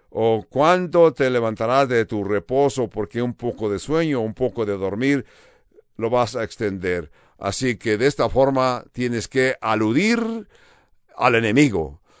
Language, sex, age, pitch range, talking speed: English, male, 60-79, 110-140 Hz, 150 wpm